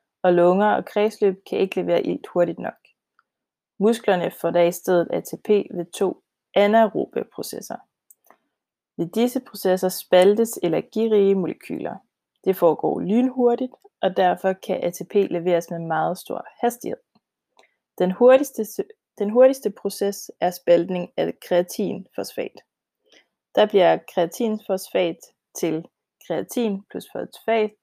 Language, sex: Danish, female